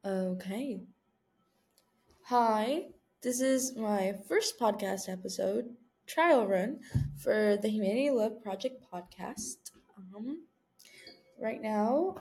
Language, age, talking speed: English, 20-39, 95 wpm